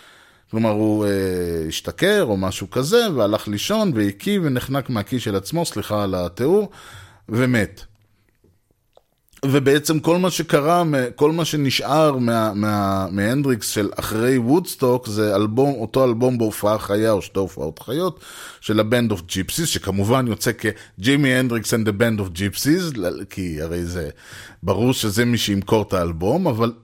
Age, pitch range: 30-49, 105-150 Hz